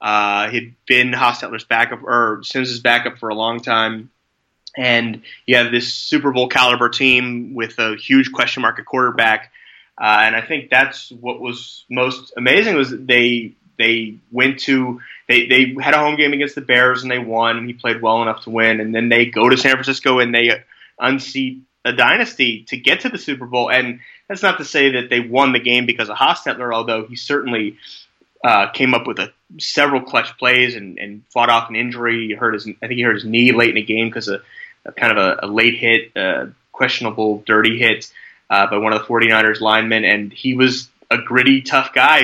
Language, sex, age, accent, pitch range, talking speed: English, male, 20-39, American, 115-130 Hz, 215 wpm